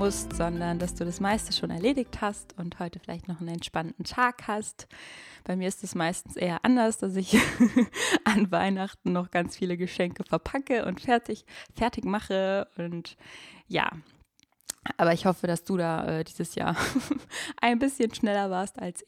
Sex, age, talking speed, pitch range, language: female, 20-39, 165 wpm, 185-220 Hz, German